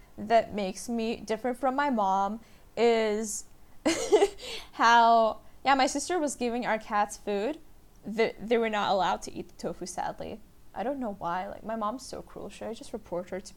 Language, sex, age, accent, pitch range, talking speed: English, female, 10-29, American, 215-285 Hz, 185 wpm